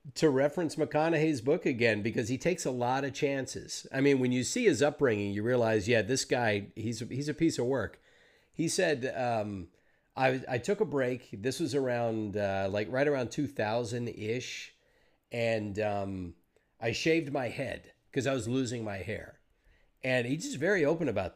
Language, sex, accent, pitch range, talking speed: English, male, American, 110-145 Hz, 180 wpm